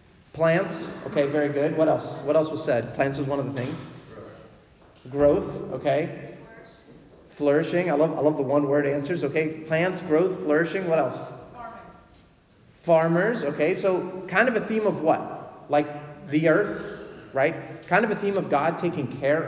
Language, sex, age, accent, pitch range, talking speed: English, male, 30-49, American, 135-175 Hz, 165 wpm